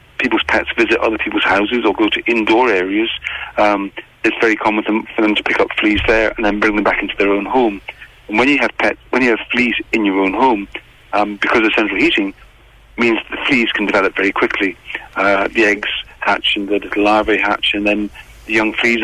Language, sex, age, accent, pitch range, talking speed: English, male, 40-59, British, 105-125 Hz, 220 wpm